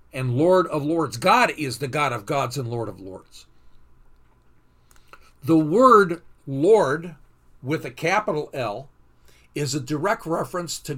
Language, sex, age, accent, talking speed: English, male, 50-69, American, 140 wpm